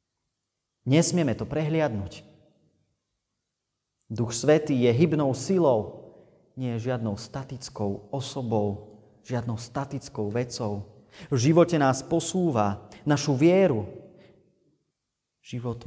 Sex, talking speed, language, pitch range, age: male, 85 wpm, Slovak, 105-125 Hz, 30-49